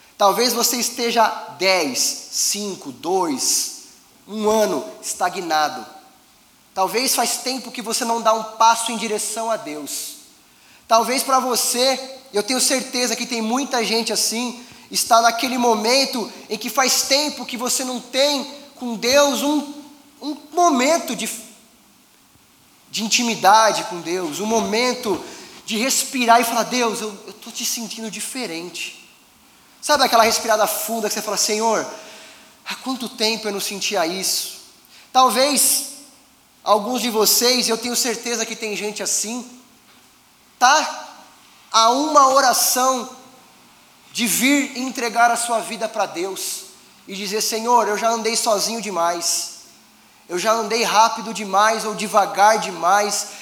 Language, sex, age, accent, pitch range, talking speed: Portuguese, male, 20-39, Brazilian, 215-255 Hz, 135 wpm